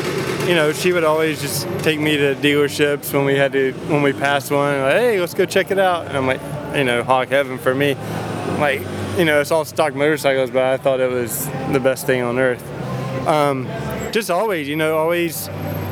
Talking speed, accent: 215 wpm, American